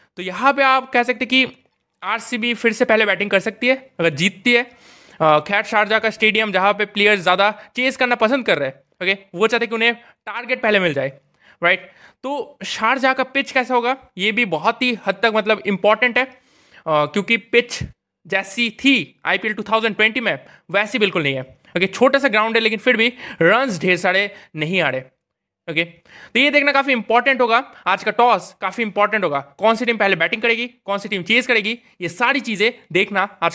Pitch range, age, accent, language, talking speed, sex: 180-245 Hz, 20-39, native, Hindi, 185 wpm, male